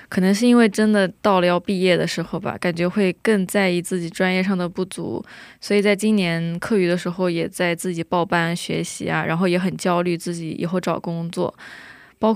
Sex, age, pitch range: female, 20-39, 170-195 Hz